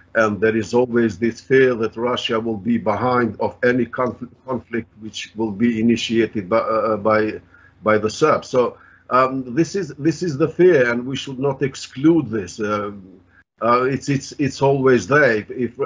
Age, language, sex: 50-69, Turkish, male